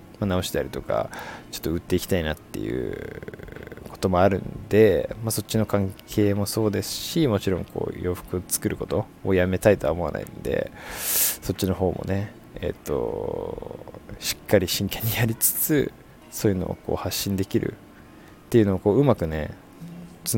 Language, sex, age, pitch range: Japanese, male, 20-39, 90-105 Hz